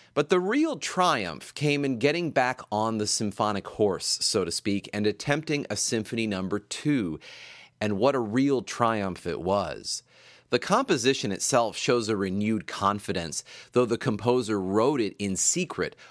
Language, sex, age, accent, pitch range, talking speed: English, male, 30-49, American, 100-135 Hz, 155 wpm